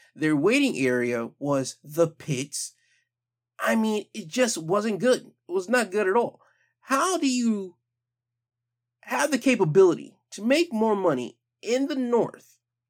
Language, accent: English, American